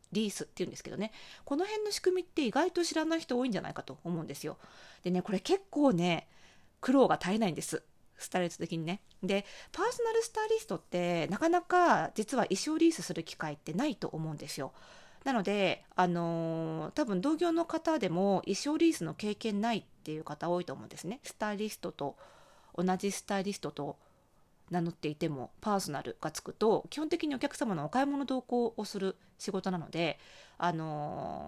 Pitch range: 165-255 Hz